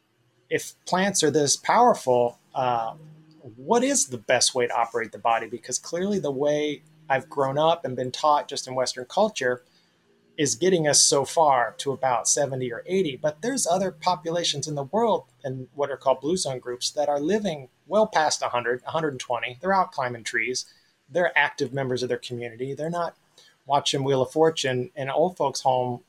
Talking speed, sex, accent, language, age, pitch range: 185 wpm, male, American, English, 30-49, 125-155 Hz